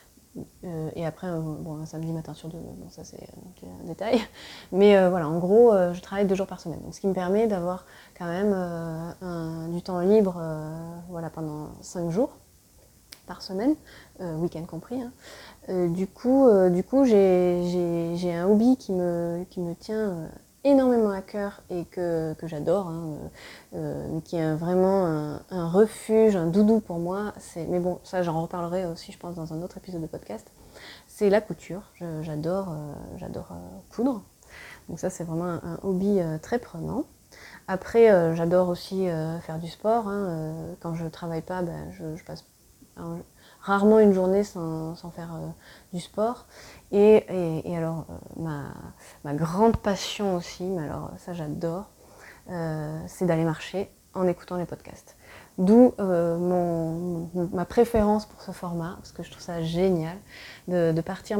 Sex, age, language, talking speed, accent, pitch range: female, 20-39, French, 185 wpm, French, 165-195 Hz